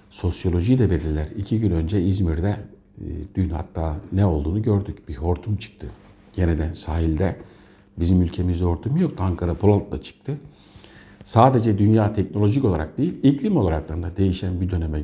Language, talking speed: Turkish, 140 wpm